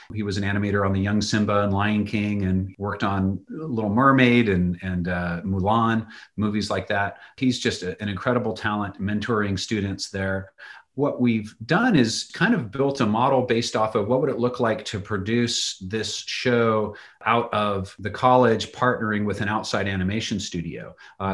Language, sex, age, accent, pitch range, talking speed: English, male, 40-59, American, 100-115 Hz, 175 wpm